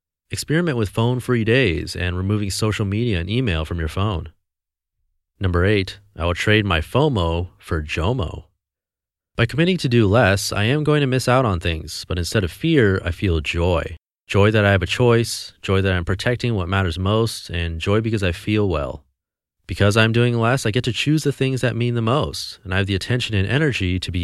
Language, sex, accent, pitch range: English, male, American, 90-115 Hz